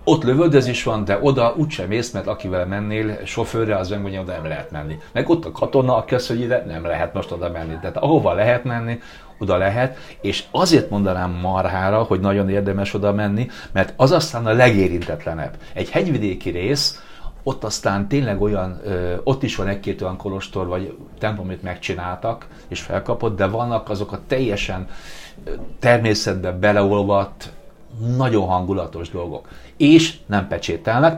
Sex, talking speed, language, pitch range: male, 155 wpm, Hungarian, 95-115 Hz